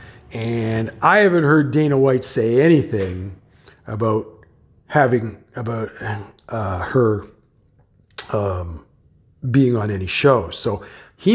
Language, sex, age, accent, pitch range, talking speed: English, male, 50-69, American, 105-155 Hz, 105 wpm